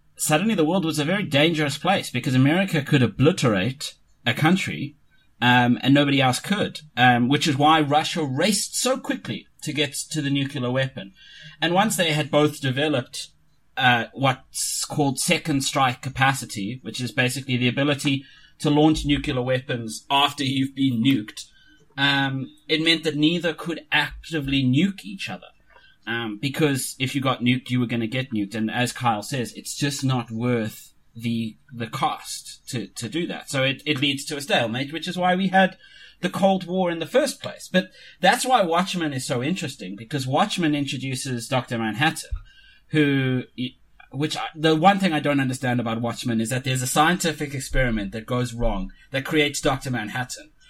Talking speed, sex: 180 wpm, male